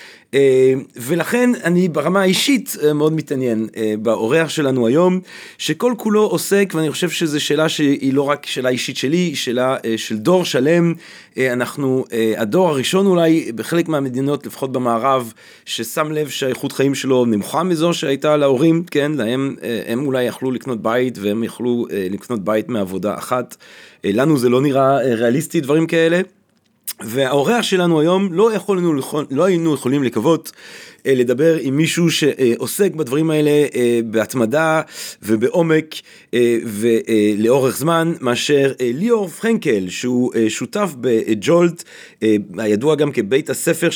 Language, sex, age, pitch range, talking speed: Hebrew, male, 40-59, 125-170 Hz, 140 wpm